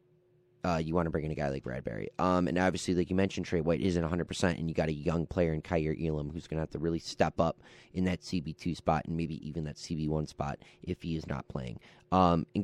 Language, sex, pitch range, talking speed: English, male, 80-95 Hz, 275 wpm